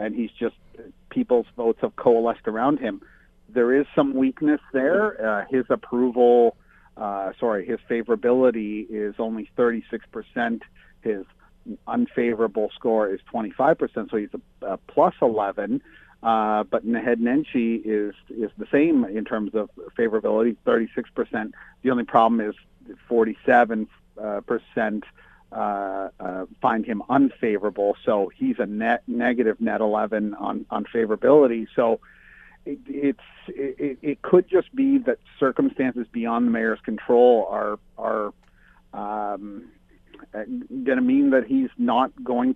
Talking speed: 130 wpm